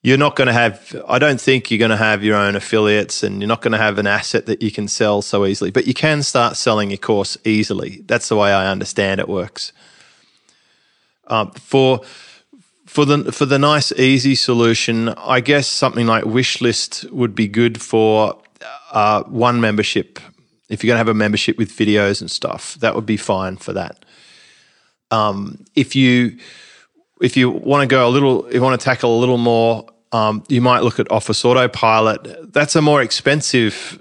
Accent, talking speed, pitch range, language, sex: Australian, 195 wpm, 110-130 Hz, English, male